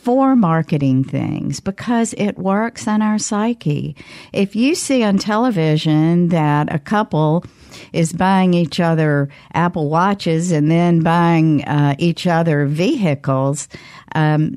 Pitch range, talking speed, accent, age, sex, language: 150-210 Hz, 130 wpm, American, 50-69, female, English